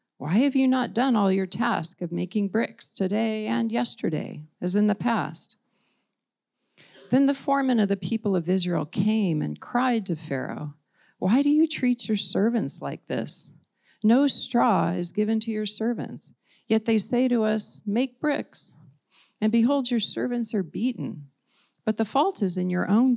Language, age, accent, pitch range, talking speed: English, 40-59, American, 160-225 Hz, 170 wpm